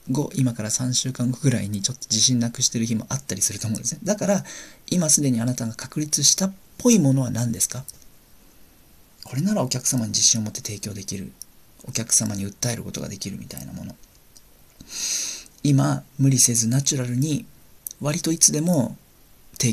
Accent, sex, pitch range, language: native, male, 110-135 Hz, Japanese